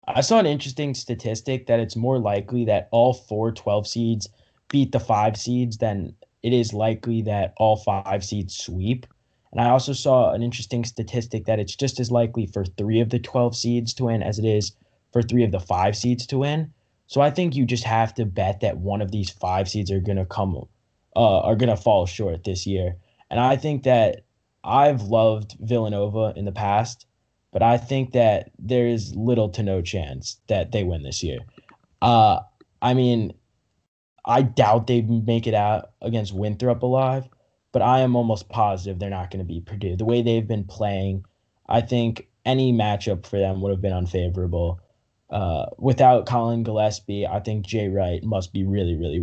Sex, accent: male, American